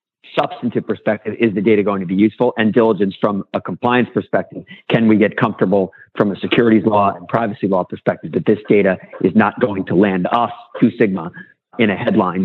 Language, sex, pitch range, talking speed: English, male, 105-130 Hz, 200 wpm